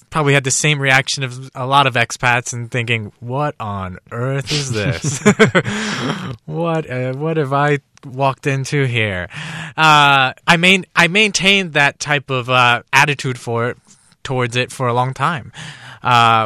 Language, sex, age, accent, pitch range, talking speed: English, male, 20-39, American, 115-135 Hz, 155 wpm